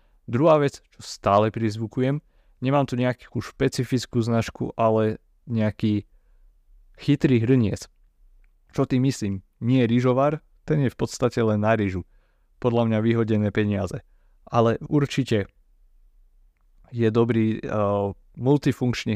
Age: 30-49